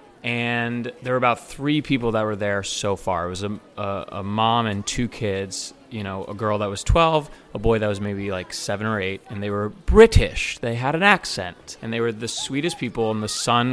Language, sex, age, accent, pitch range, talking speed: English, male, 30-49, American, 105-130 Hz, 225 wpm